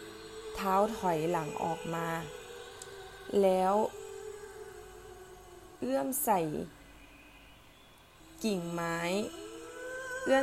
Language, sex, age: Thai, female, 20-39